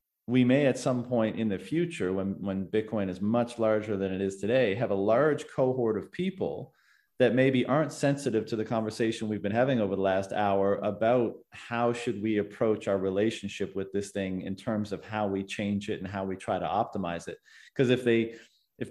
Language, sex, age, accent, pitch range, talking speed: English, male, 40-59, American, 100-120 Hz, 210 wpm